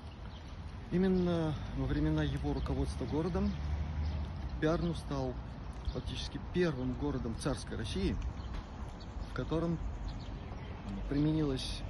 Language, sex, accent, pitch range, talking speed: Russian, male, native, 105-145 Hz, 85 wpm